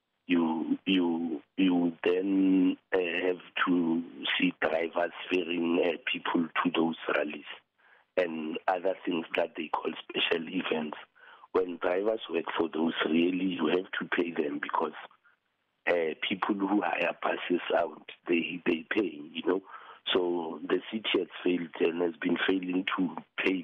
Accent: French